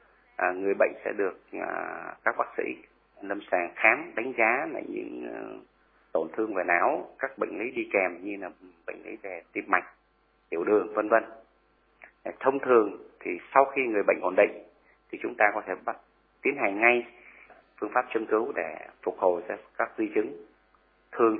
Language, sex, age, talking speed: Vietnamese, male, 30-49, 190 wpm